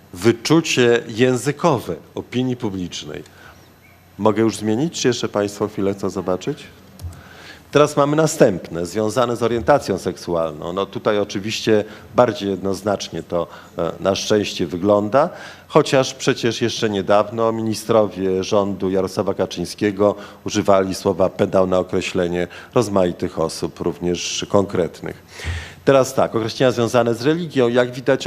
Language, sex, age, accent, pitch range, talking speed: Polish, male, 40-59, native, 90-120 Hz, 115 wpm